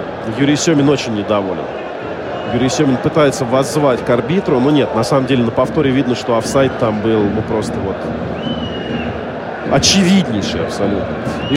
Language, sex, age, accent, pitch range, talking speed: Russian, male, 40-59, native, 125-180 Hz, 145 wpm